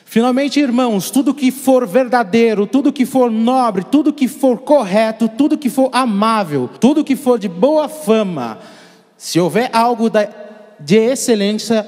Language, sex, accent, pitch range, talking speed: Portuguese, male, Brazilian, 165-230 Hz, 145 wpm